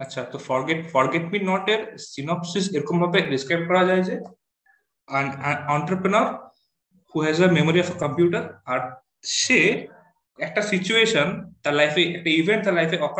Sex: male